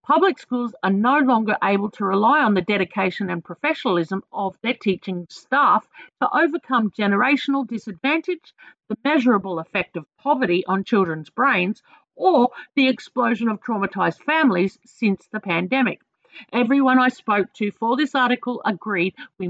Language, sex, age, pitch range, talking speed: English, female, 50-69, 195-270 Hz, 145 wpm